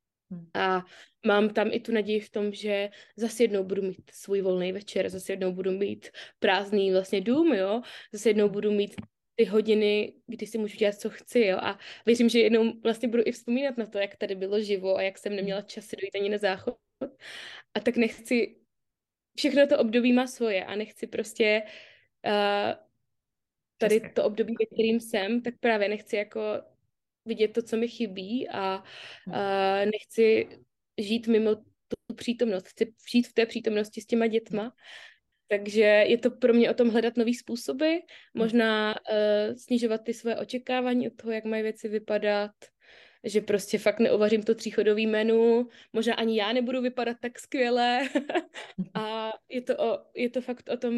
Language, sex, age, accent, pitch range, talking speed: Czech, female, 20-39, native, 205-235 Hz, 170 wpm